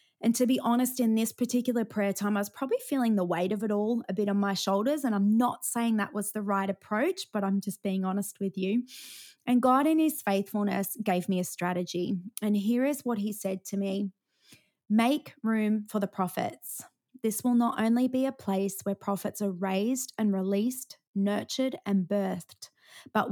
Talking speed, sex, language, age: 200 wpm, female, English, 20-39